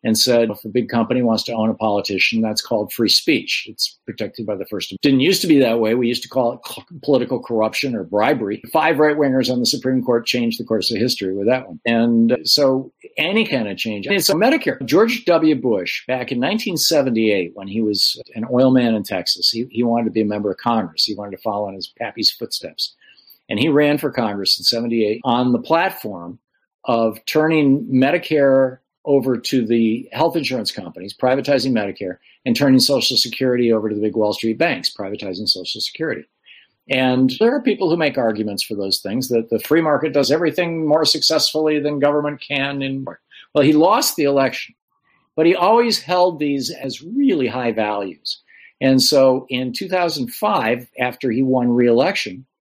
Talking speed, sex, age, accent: 195 wpm, male, 50-69, American